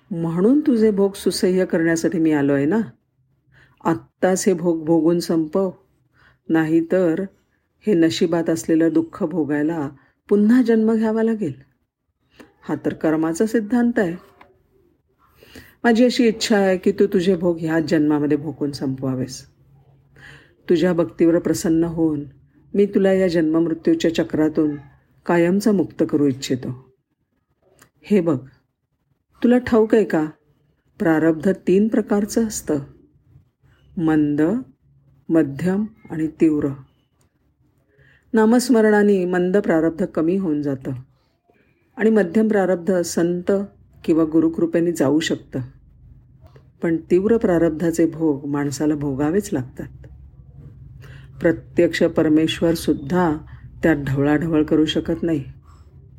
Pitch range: 145-190 Hz